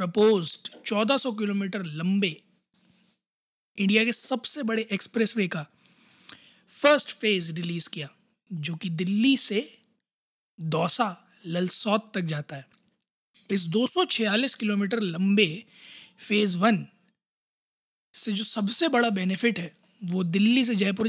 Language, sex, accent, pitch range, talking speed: Hindi, male, native, 195-235 Hz, 110 wpm